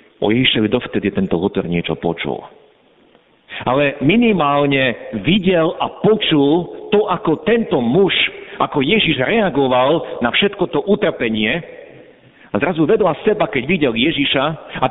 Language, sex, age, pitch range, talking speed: Slovak, male, 50-69, 115-180 Hz, 125 wpm